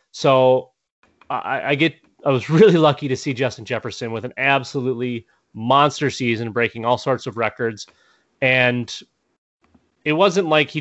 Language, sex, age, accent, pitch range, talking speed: English, male, 30-49, American, 115-140 Hz, 150 wpm